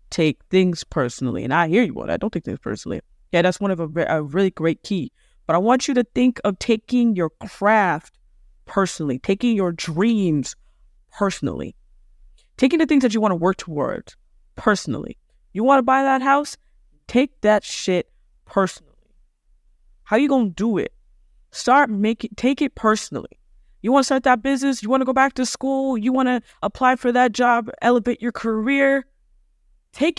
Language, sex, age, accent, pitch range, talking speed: English, female, 20-39, American, 185-255 Hz, 190 wpm